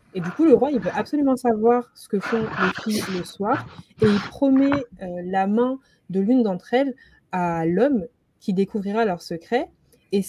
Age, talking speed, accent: 20-39, 190 wpm, French